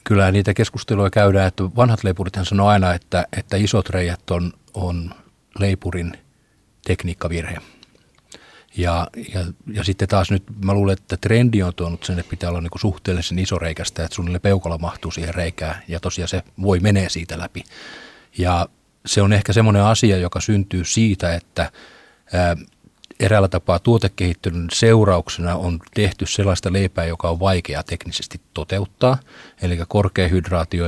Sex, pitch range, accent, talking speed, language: male, 85-100 Hz, native, 150 wpm, Finnish